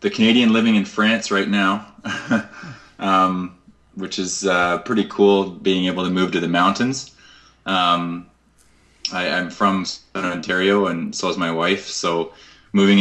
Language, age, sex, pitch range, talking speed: English, 20-39, male, 80-95 Hz, 150 wpm